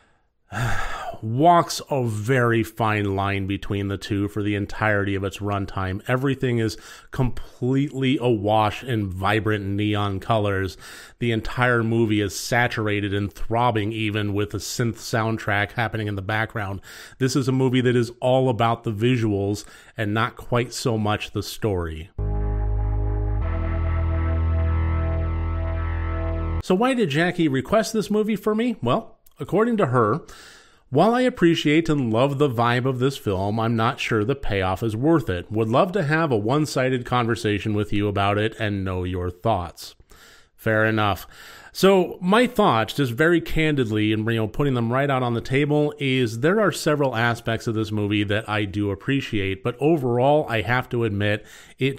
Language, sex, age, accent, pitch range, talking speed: English, male, 30-49, American, 105-135 Hz, 160 wpm